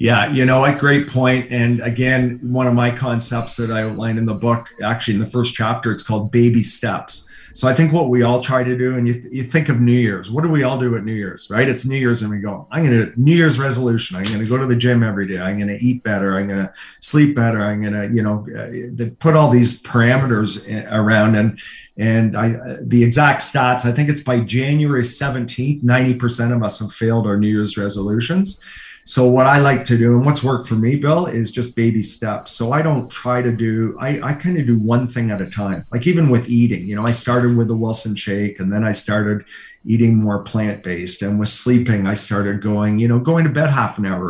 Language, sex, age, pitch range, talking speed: English, male, 40-59, 105-125 Hz, 240 wpm